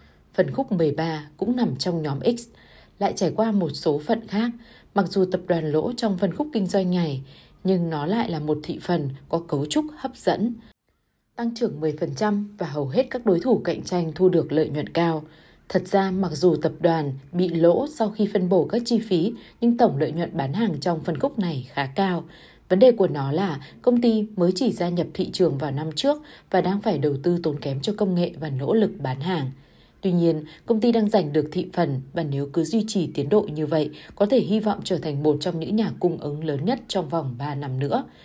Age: 20-39